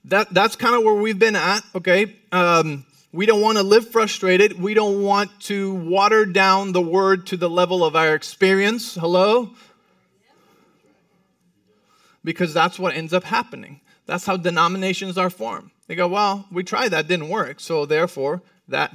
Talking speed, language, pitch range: 165 wpm, English, 180-215 Hz